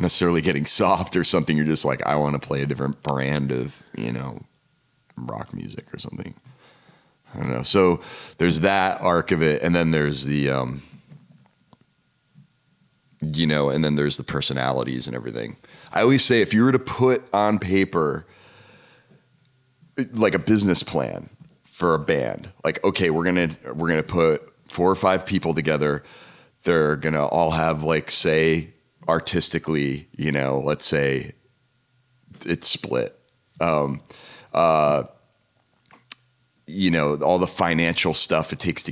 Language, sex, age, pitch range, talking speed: English, male, 30-49, 75-100 Hz, 150 wpm